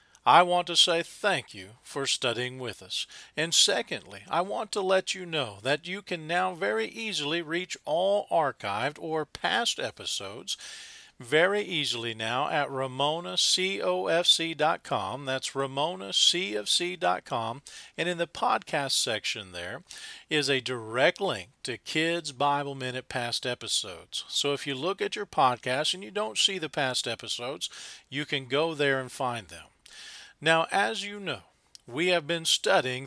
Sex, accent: male, American